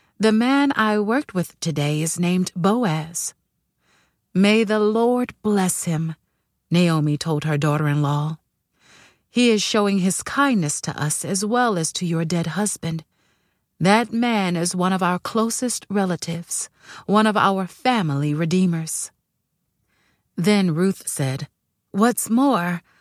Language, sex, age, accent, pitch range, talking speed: English, female, 30-49, American, 155-215 Hz, 130 wpm